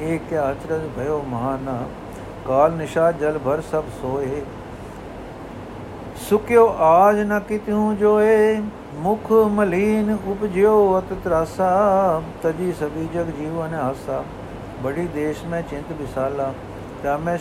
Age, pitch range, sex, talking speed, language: 60-79, 135-175 Hz, male, 115 wpm, Punjabi